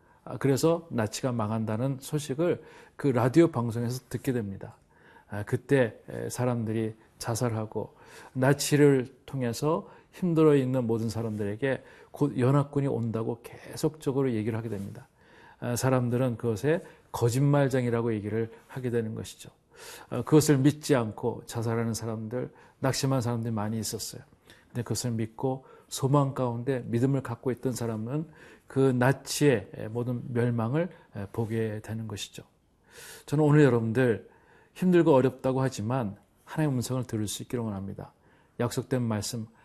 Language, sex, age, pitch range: Korean, male, 40-59, 115-135 Hz